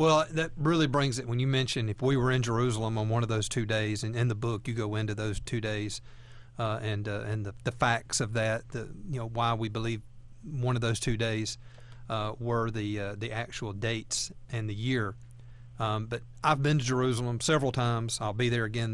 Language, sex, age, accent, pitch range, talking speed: English, male, 40-59, American, 115-135 Hz, 225 wpm